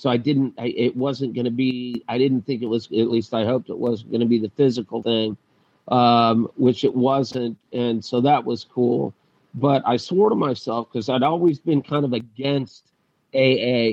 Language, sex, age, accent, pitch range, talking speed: English, male, 40-59, American, 115-140 Hz, 205 wpm